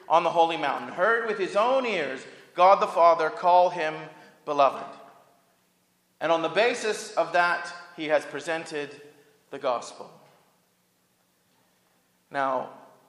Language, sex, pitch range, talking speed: English, male, 135-180 Hz, 125 wpm